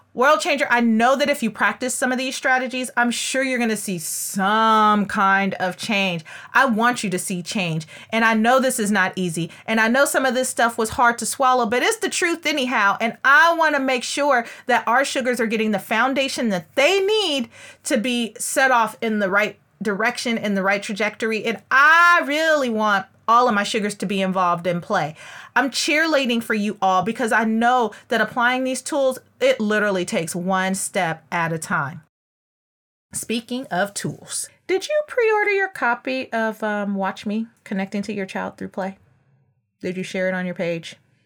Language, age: English, 30-49